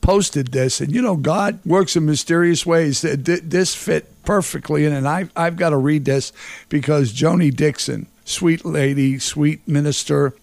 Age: 50-69